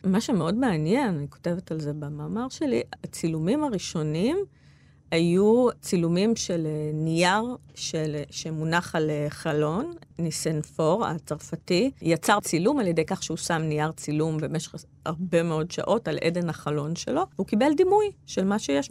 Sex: female